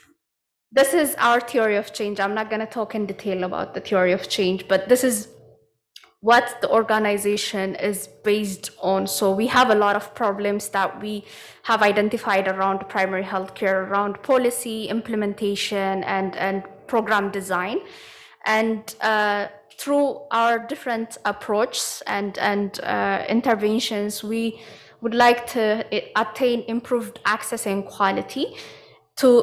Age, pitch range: 20-39, 200-230 Hz